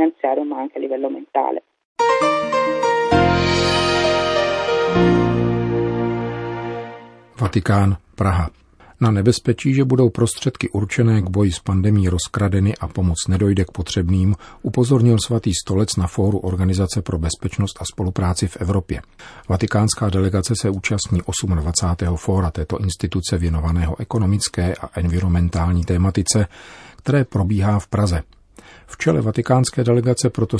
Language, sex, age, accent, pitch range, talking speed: Czech, male, 50-69, native, 90-115 Hz, 100 wpm